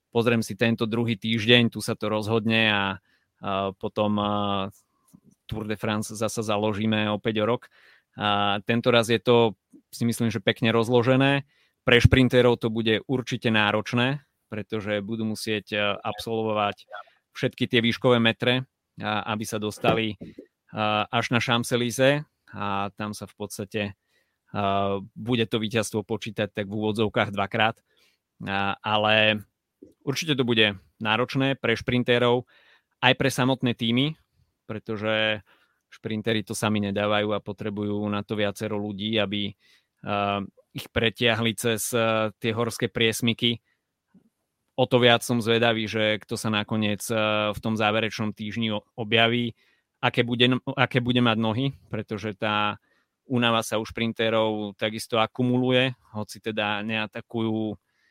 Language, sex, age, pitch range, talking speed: Czech, male, 30-49, 105-120 Hz, 130 wpm